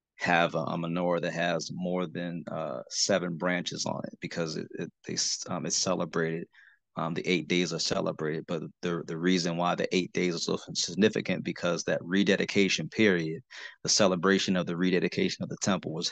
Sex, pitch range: male, 90-100 Hz